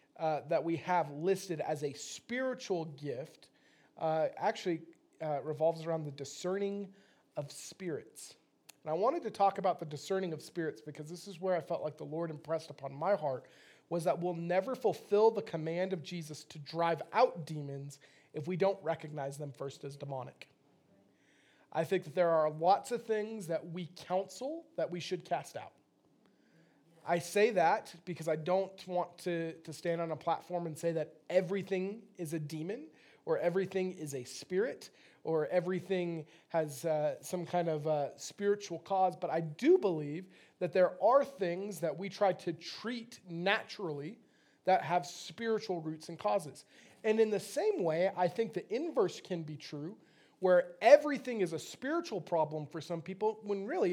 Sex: male